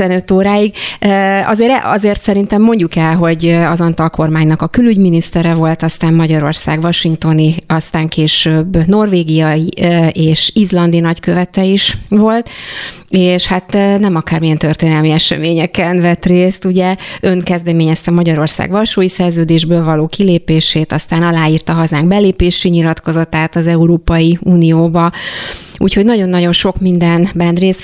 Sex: female